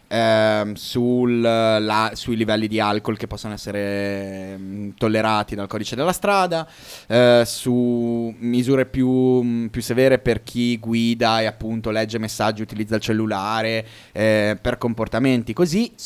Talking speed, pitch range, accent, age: 130 wpm, 110-130 Hz, native, 20-39